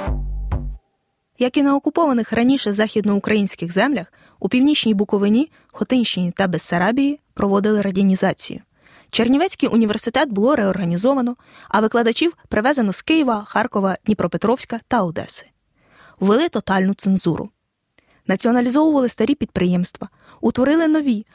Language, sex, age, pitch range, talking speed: Ukrainian, female, 20-39, 195-245 Hz, 100 wpm